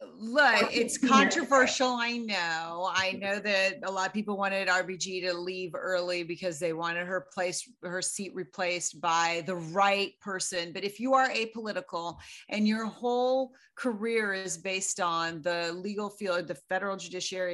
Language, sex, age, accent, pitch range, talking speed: English, female, 40-59, American, 180-240 Hz, 160 wpm